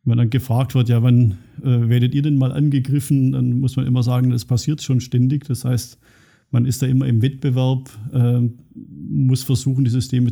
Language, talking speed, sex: German, 200 wpm, male